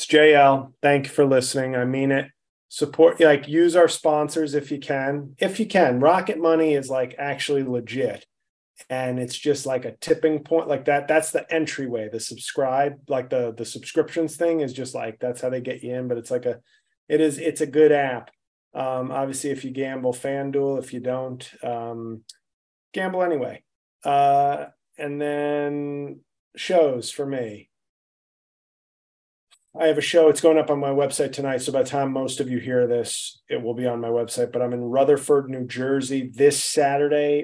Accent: American